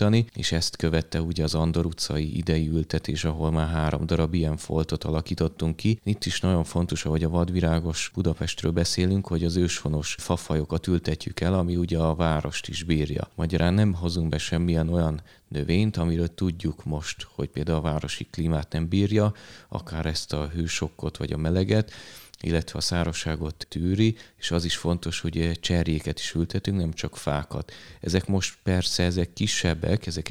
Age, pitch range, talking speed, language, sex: 30-49, 80-90 Hz, 165 wpm, Hungarian, male